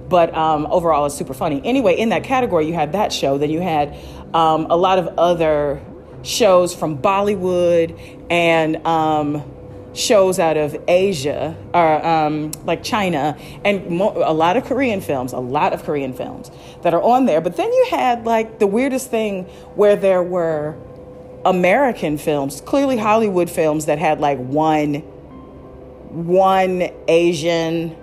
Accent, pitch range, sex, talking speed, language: American, 150-190 Hz, female, 155 wpm, English